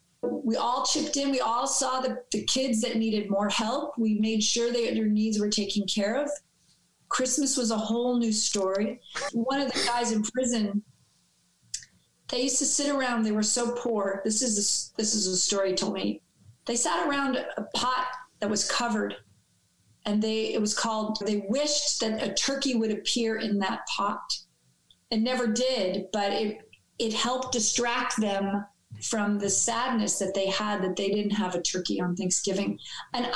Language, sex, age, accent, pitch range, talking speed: English, female, 40-59, American, 200-255 Hz, 180 wpm